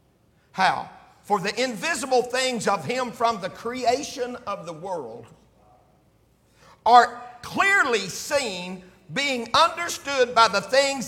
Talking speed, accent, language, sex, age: 115 wpm, American, English, male, 50-69